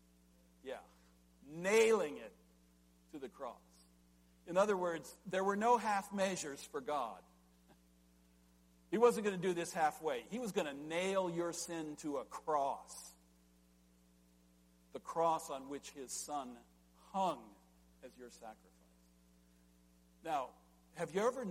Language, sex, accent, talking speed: English, male, American, 130 wpm